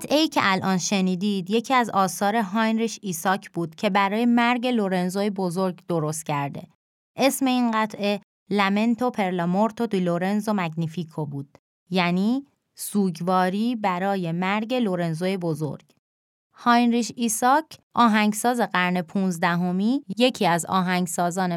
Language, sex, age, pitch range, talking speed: Persian, female, 20-39, 185-235 Hz, 115 wpm